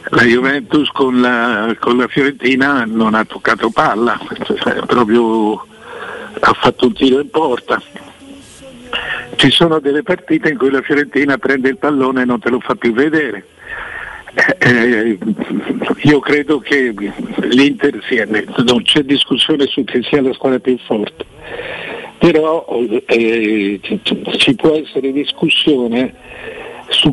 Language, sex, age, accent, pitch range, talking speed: Italian, male, 60-79, native, 120-140 Hz, 135 wpm